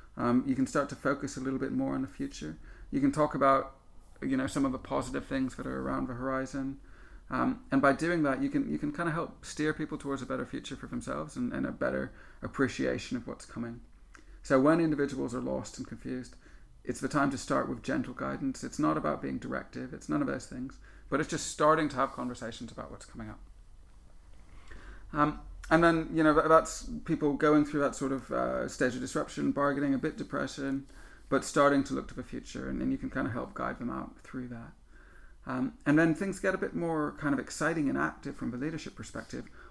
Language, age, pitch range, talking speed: English, 30-49, 130-160 Hz, 225 wpm